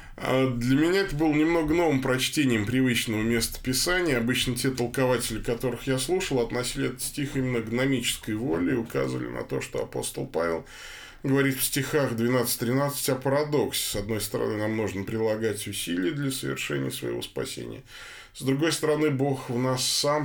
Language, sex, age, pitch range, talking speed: Russian, male, 20-39, 100-135 Hz, 155 wpm